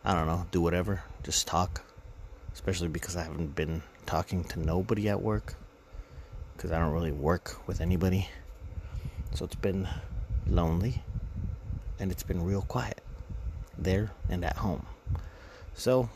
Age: 30-49